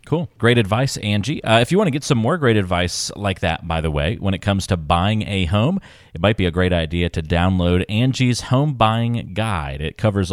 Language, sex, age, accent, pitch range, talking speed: English, male, 30-49, American, 85-115 Hz, 230 wpm